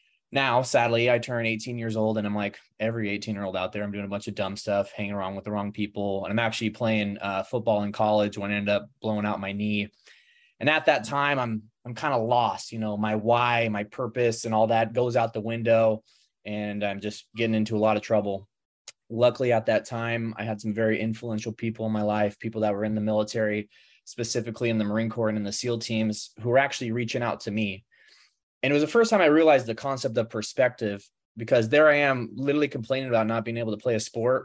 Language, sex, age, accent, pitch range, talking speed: English, male, 20-39, American, 105-120 Hz, 240 wpm